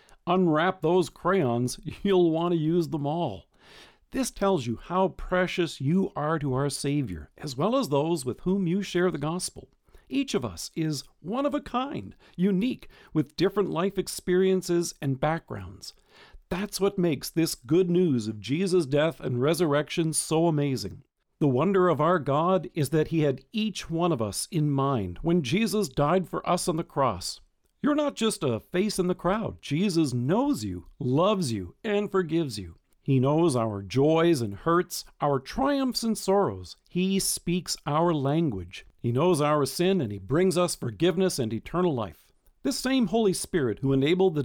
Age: 50-69